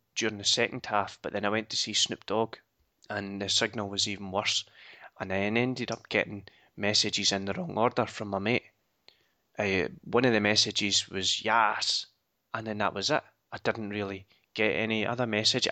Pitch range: 100-115 Hz